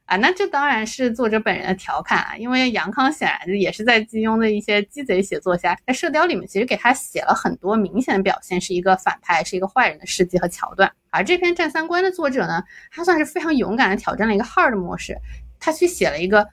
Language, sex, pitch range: Chinese, female, 190-255 Hz